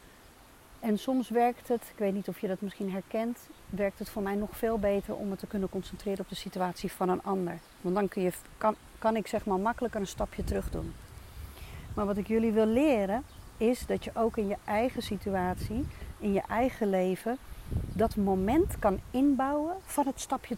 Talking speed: 200 wpm